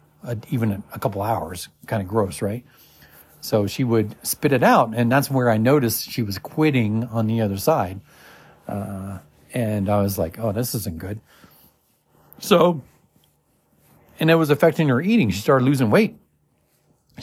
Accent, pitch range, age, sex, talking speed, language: American, 100-135 Hz, 40-59, male, 165 wpm, English